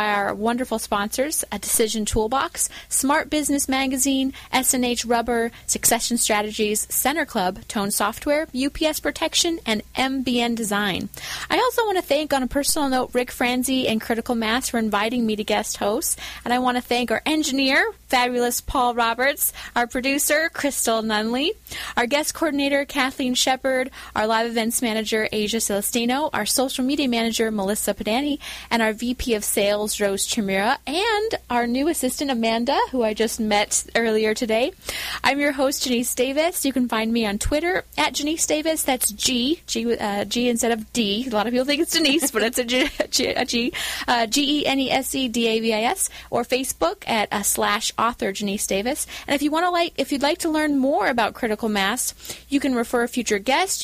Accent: American